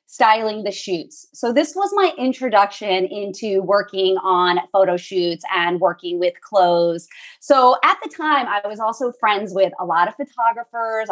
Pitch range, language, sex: 195-270 Hz, English, female